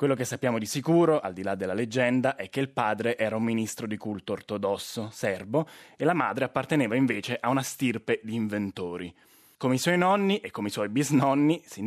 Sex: male